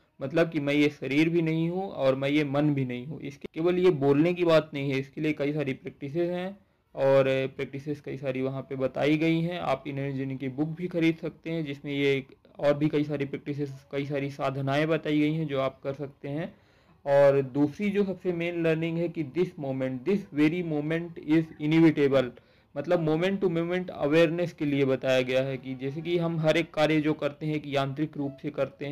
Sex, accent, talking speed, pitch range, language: male, native, 215 wpm, 135-160 Hz, Hindi